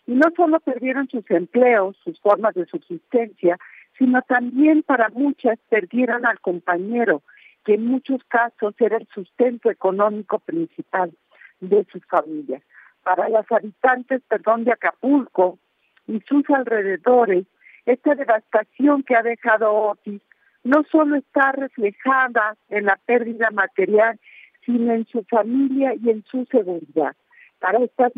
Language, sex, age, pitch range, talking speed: Spanish, female, 50-69, 200-260 Hz, 130 wpm